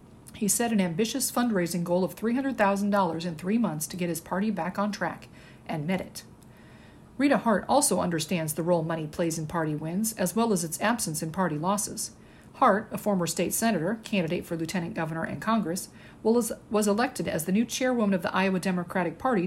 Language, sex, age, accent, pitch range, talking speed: English, female, 50-69, American, 175-220 Hz, 190 wpm